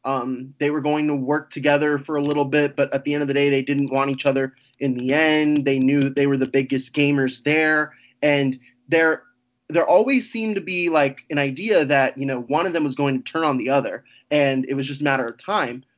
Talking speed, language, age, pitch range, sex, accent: 250 wpm, English, 20-39, 135-155 Hz, male, American